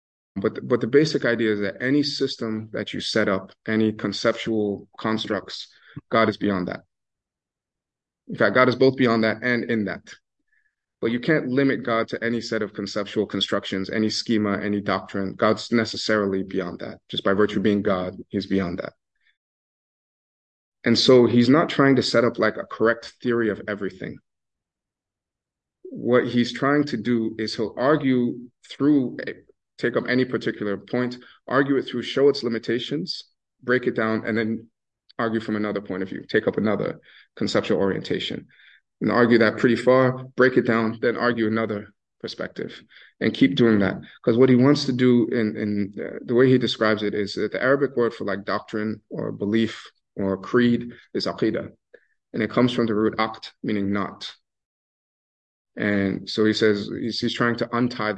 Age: 30-49